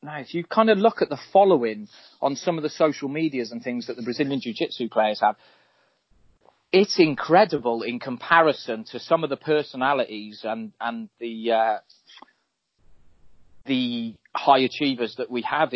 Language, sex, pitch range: English, male, 115-150 Hz